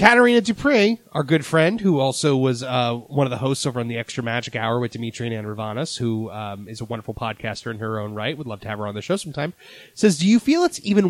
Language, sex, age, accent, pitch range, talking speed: English, male, 30-49, American, 120-180 Hz, 270 wpm